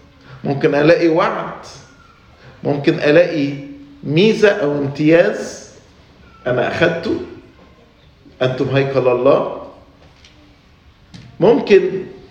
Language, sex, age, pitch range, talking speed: English, male, 40-59, 125-165 Hz, 70 wpm